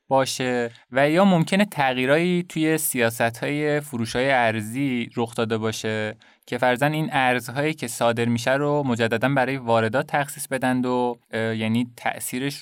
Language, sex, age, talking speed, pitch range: Persian, male, 20-39, 135 wpm, 115-135 Hz